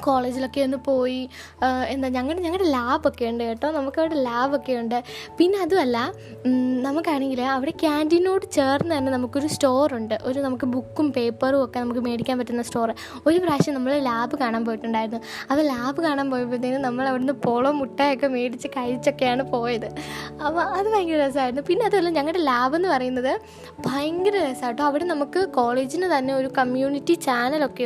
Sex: female